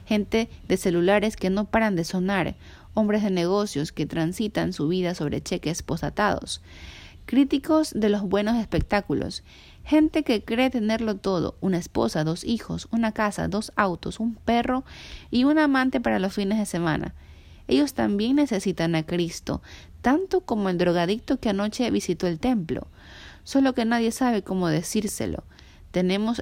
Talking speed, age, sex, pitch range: 150 wpm, 30-49, female, 165-225 Hz